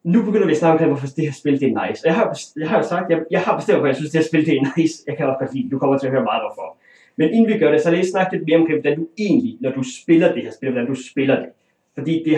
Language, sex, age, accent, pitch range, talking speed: Danish, male, 30-49, native, 140-210 Hz, 330 wpm